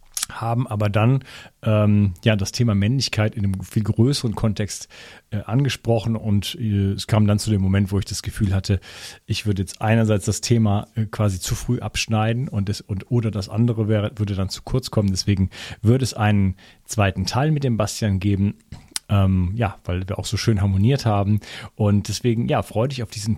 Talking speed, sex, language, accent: 200 wpm, male, German, German